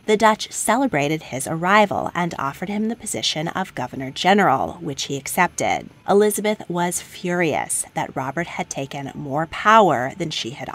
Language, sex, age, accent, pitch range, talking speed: English, female, 30-49, American, 150-205 Hz, 150 wpm